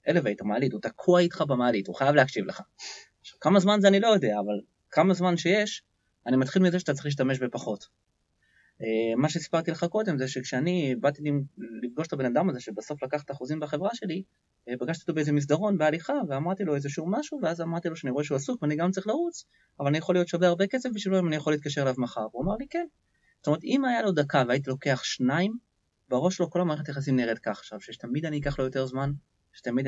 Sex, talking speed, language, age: male, 175 wpm, Hebrew, 20-39